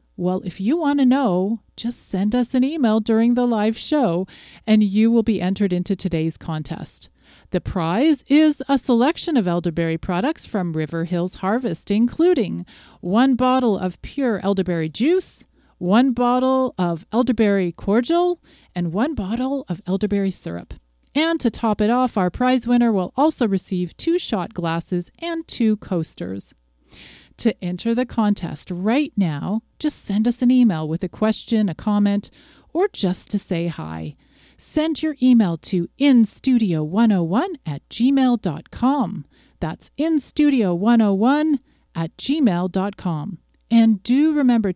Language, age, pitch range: English, 40-59, 180-260 Hz